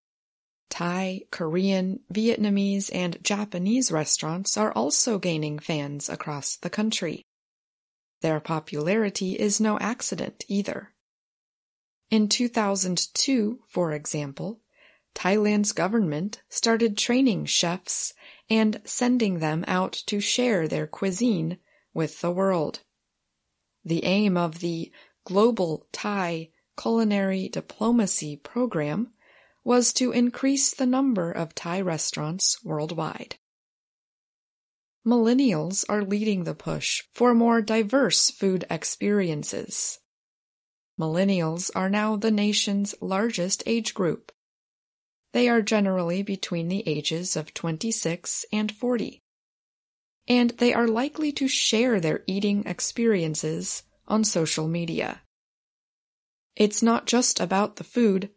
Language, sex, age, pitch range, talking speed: English, female, 30-49, 170-230 Hz, 105 wpm